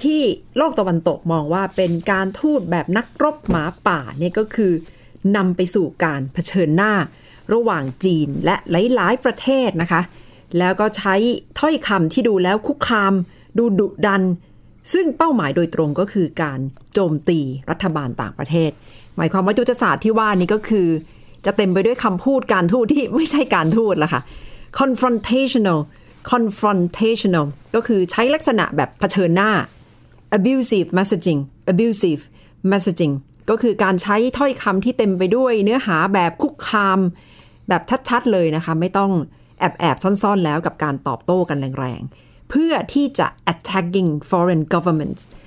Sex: female